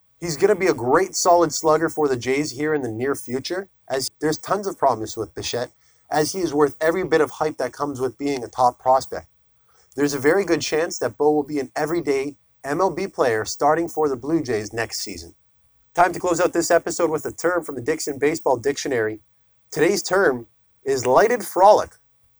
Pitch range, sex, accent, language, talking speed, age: 125-175 Hz, male, American, English, 205 wpm, 30-49